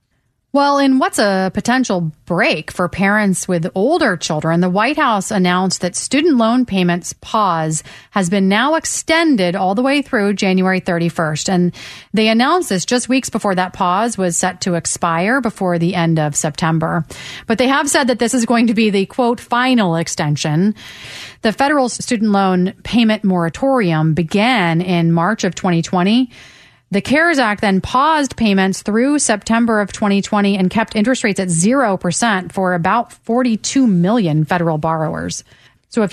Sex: female